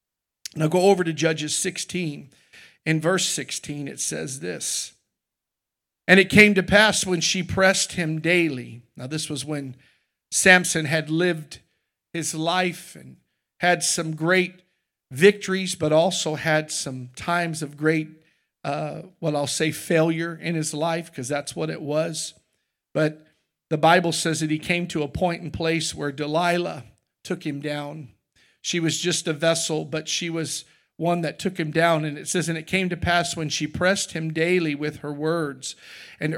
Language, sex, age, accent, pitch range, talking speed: English, male, 50-69, American, 150-175 Hz, 170 wpm